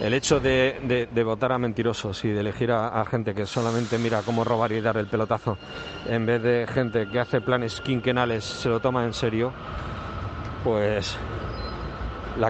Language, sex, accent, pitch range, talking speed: Spanish, male, Spanish, 100-125 Hz, 180 wpm